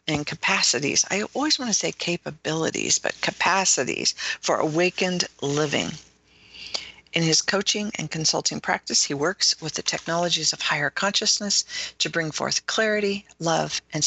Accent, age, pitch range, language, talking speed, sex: American, 50-69, 140-190 Hz, English, 140 wpm, female